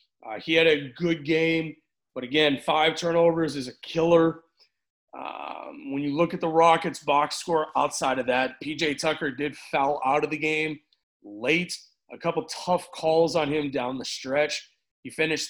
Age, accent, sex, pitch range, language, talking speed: 30-49, American, male, 145-170 Hz, English, 175 wpm